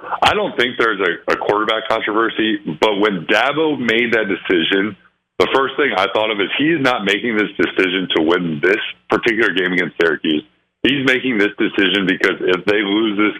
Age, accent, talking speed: 50-69, American, 195 wpm